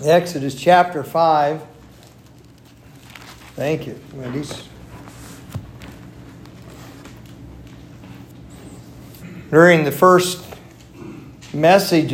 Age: 50-69